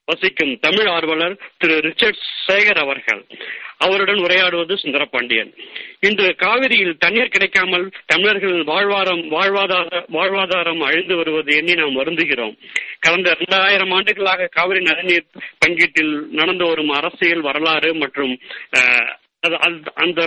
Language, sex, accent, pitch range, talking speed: Tamil, male, native, 155-190 Hz, 95 wpm